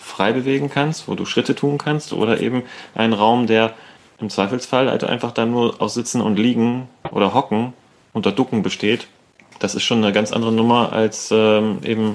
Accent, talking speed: German, 190 wpm